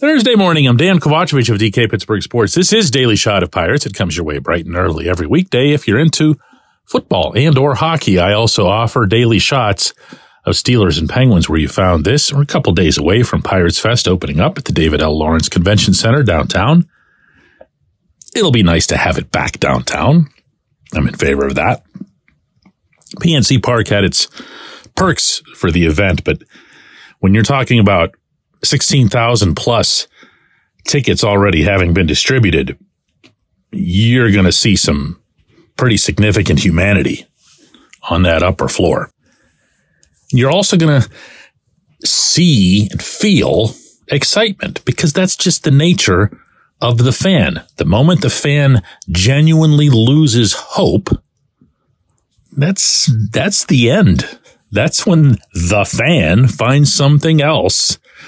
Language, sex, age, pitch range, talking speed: English, male, 40-59, 95-145 Hz, 145 wpm